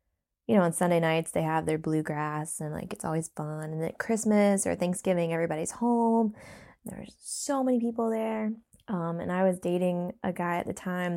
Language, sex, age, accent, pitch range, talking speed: English, female, 20-39, American, 170-200 Hz, 195 wpm